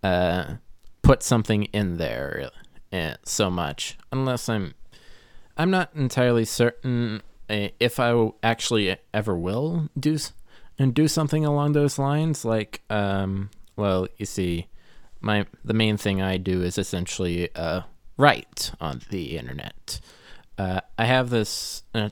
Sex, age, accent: male, 20-39, American